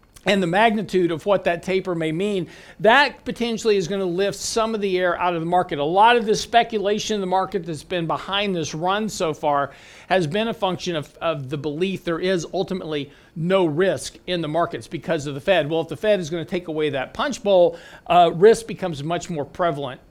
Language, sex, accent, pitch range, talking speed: English, male, American, 170-205 Hz, 225 wpm